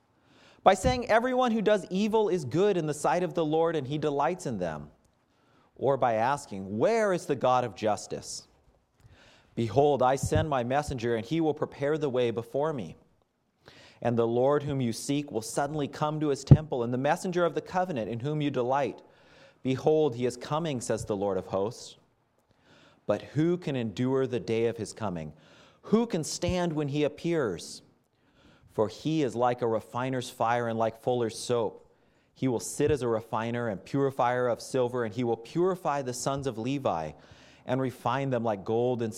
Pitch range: 115-150 Hz